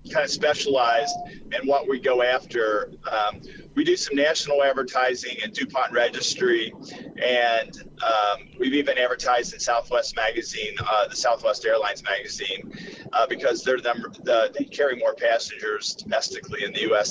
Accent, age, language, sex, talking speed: American, 40-59, English, male, 150 wpm